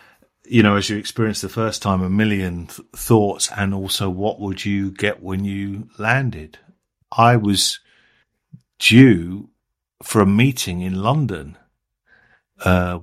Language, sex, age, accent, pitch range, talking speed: English, male, 50-69, British, 95-115 Hz, 135 wpm